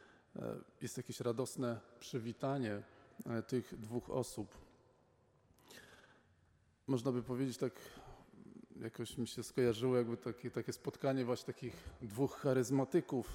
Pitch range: 115-130 Hz